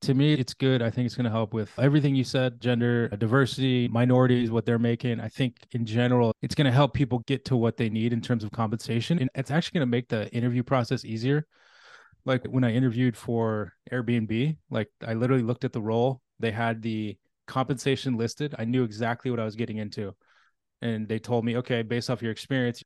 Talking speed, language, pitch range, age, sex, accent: 220 wpm, English, 115-135 Hz, 20-39, male, American